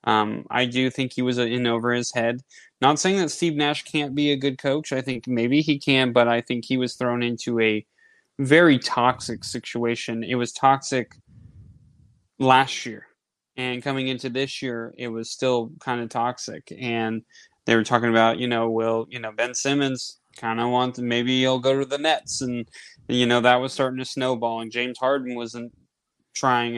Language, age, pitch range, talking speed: English, 20-39, 120-140 Hz, 195 wpm